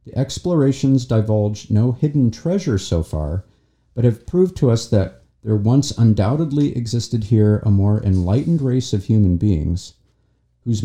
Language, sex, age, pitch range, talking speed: English, male, 50-69, 100-130 Hz, 150 wpm